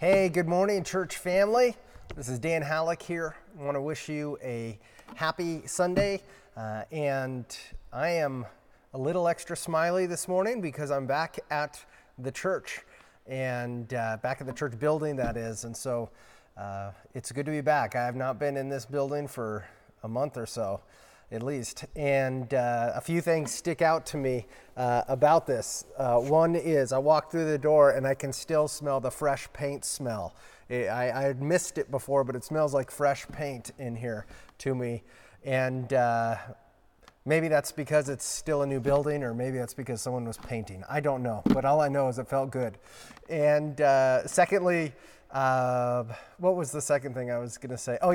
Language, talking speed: English, 190 wpm